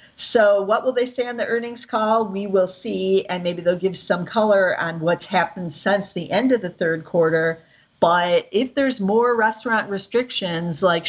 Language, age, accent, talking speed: English, 50-69, American, 190 wpm